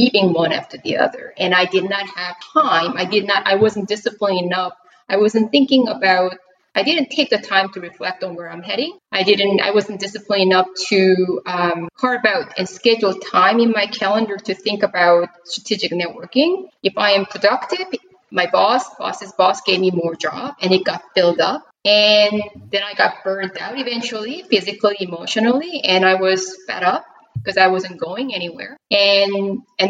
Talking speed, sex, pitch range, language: 185 wpm, female, 185-240 Hz, English